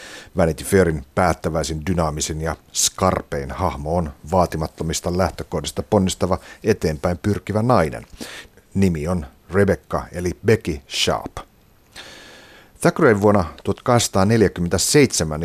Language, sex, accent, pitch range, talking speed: Finnish, male, native, 80-100 Hz, 90 wpm